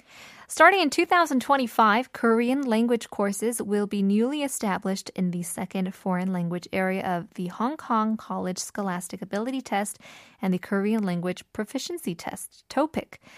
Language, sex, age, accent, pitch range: Korean, female, 20-39, American, 185-240 Hz